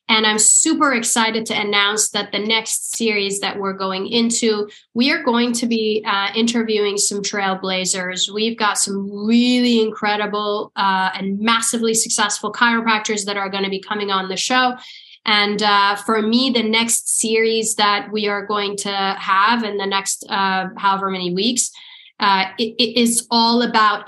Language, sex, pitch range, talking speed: English, female, 195-225 Hz, 170 wpm